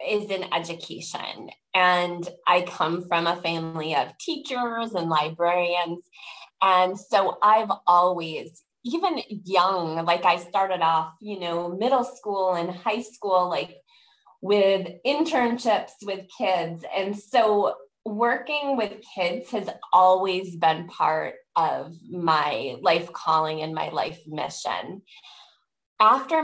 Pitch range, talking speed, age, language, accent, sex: 175-235 Hz, 120 wpm, 20-39, English, American, female